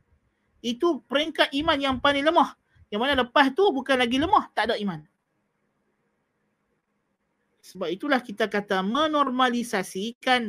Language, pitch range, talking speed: Malay, 195-255 Hz, 120 wpm